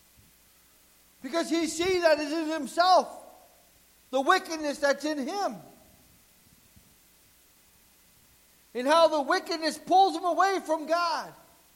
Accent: American